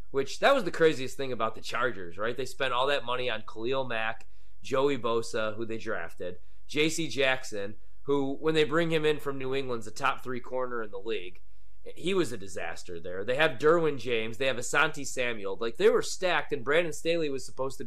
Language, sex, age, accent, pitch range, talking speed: English, male, 30-49, American, 115-155 Hz, 215 wpm